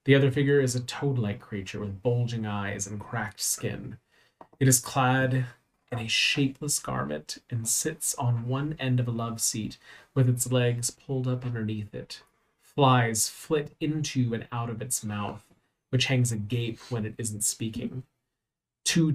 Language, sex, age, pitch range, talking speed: English, male, 30-49, 110-130 Hz, 165 wpm